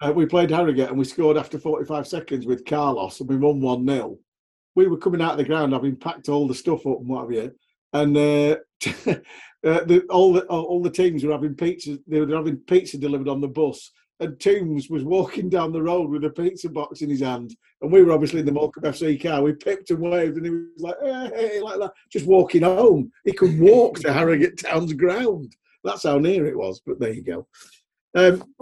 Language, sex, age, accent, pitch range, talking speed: English, male, 50-69, British, 145-185 Hz, 235 wpm